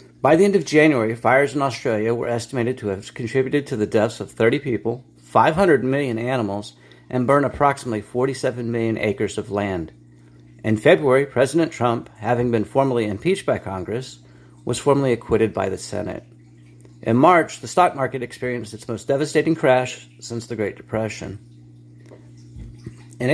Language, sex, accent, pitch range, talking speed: English, male, American, 95-130 Hz, 155 wpm